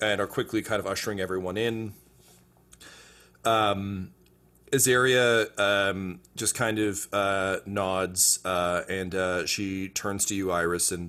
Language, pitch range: English, 80-100 Hz